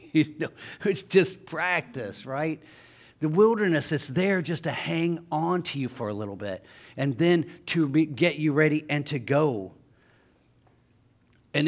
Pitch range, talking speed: 130-175 Hz, 160 wpm